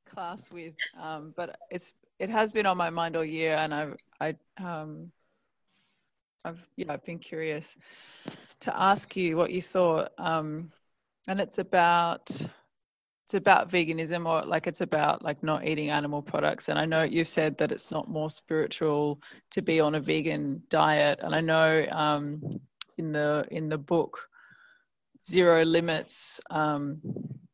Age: 20-39